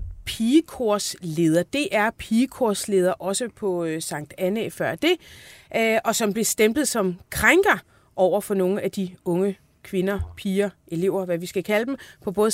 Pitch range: 180-230 Hz